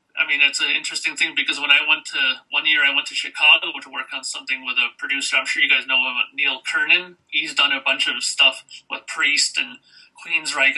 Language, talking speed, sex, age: English, 235 wpm, male, 30-49